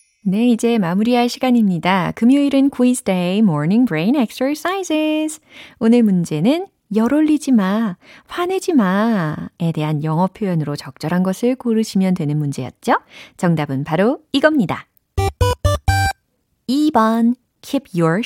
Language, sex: Korean, female